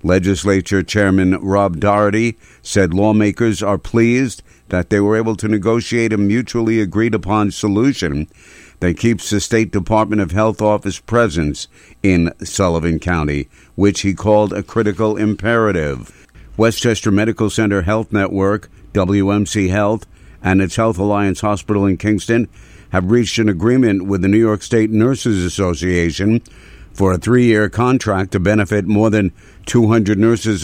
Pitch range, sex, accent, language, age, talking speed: 95-110 Hz, male, American, English, 60-79, 140 wpm